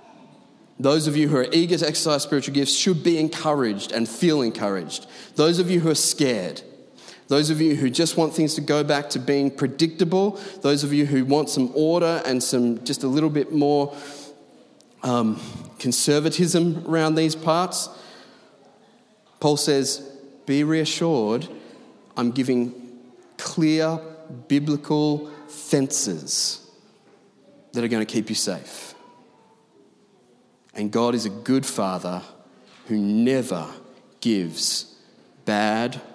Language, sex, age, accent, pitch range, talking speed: English, male, 30-49, Australian, 125-155 Hz, 135 wpm